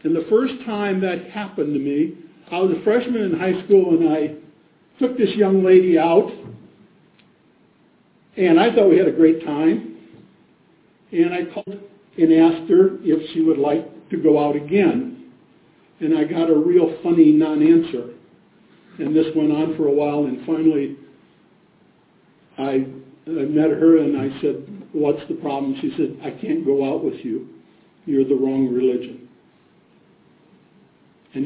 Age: 50-69